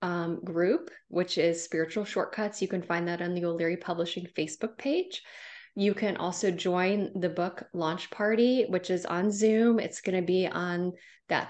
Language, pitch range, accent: English, 170-195 Hz, American